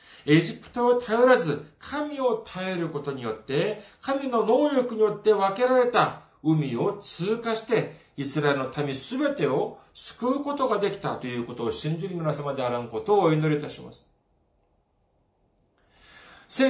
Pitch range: 140-215 Hz